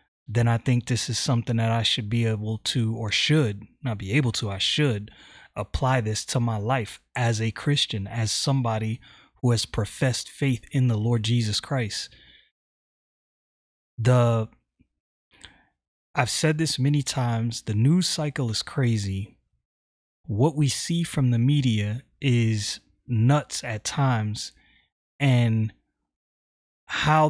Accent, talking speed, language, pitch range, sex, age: American, 135 wpm, English, 110-135 Hz, male, 30-49